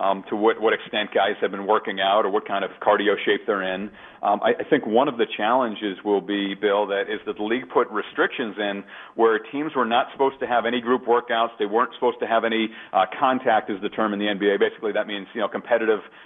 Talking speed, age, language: 245 wpm, 40-59, English